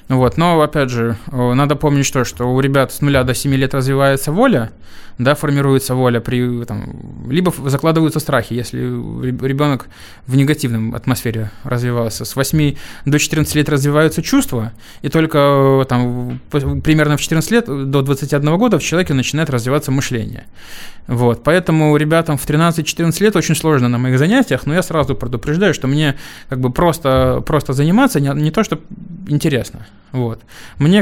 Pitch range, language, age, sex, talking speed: 125-150 Hz, Russian, 20-39, male, 160 wpm